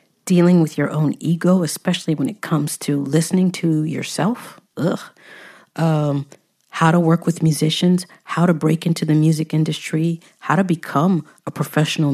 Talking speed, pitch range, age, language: 155 wpm, 150-175 Hz, 40-59, English